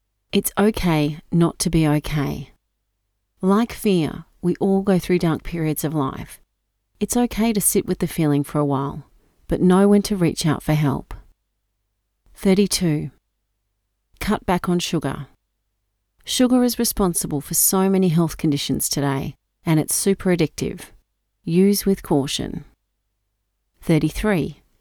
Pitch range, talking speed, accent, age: 135-200 Hz, 135 wpm, Australian, 40-59